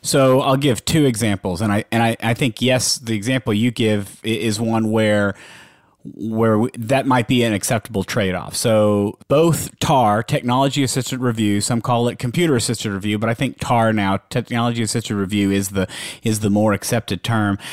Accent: American